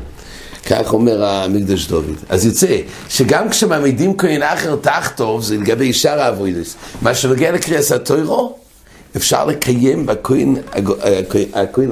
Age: 60-79